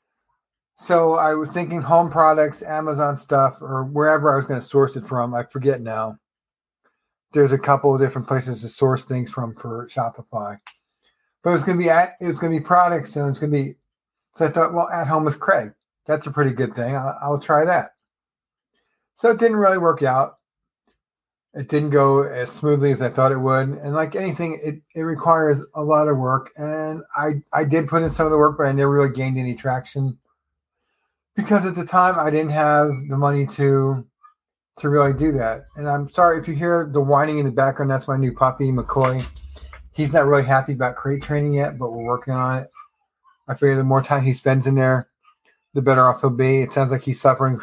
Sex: male